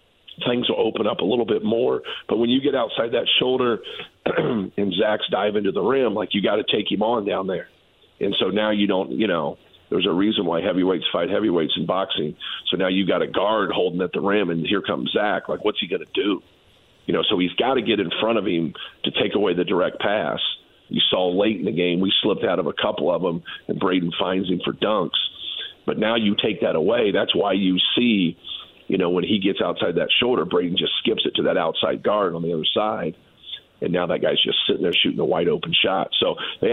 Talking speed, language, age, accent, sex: 240 wpm, English, 50-69, American, male